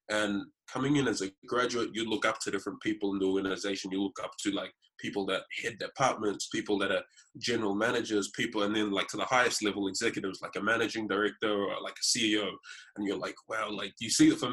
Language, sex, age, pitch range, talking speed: English, male, 20-39, 105-135 Hz, 225 wpm